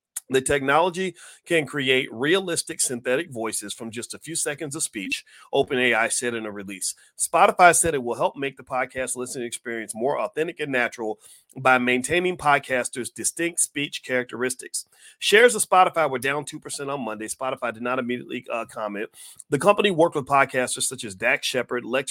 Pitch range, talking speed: 120-145 Hz, 175 wpm